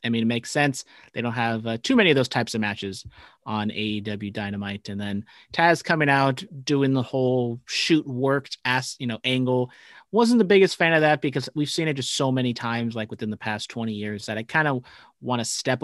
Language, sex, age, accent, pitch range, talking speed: English, male, 30-49, American, 115-145 Hz, 225 wpm